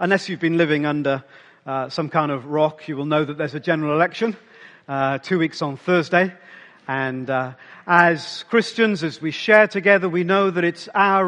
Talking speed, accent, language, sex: 190 wpm, British, English, male